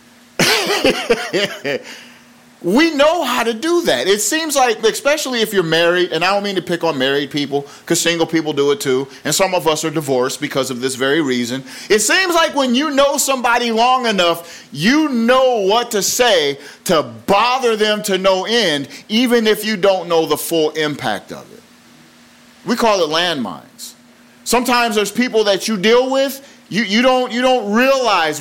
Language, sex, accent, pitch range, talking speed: English, male, American, 170-255 Hz, 175 wpm